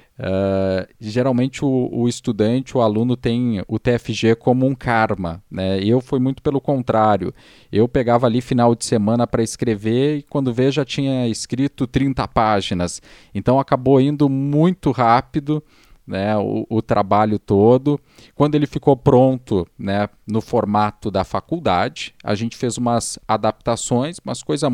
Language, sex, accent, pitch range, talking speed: Portuguese, male, Brazilian, 100-130 Hz, 150 wpm